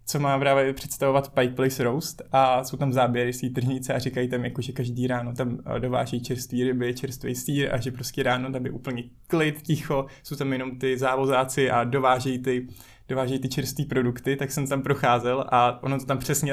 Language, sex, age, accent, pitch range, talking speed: Czech, male, 20-39, native, 125-140 Hz, 190 wpm